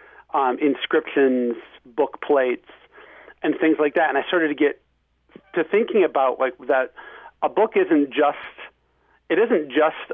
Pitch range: 130-180 Hz